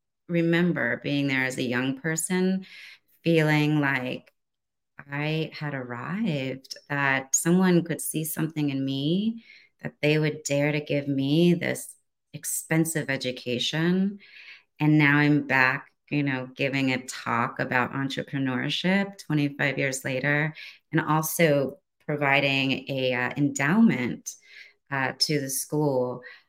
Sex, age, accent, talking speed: female, 30-49, American, 120 wpm